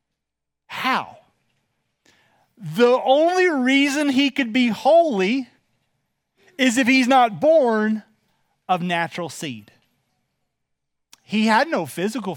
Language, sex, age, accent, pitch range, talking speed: English, male, 30-49, American, 175-230 Hz, 90 wpm